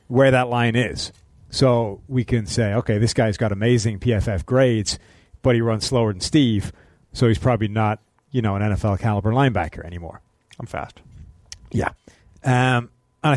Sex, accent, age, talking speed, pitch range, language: male, American, 40-59, 165 wpm, 105-125 Hz, English